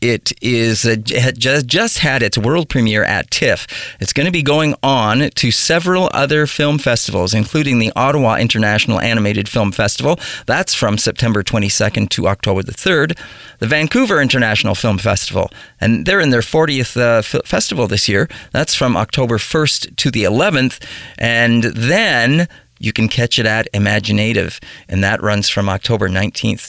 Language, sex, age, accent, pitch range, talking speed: English, male, 40-59, American, 105-130 Hz, 160 wpm